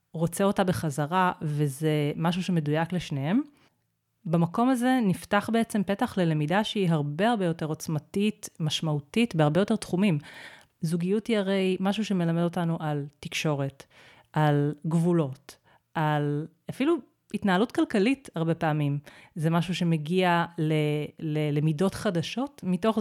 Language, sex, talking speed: Hebrew, female, 115 wpm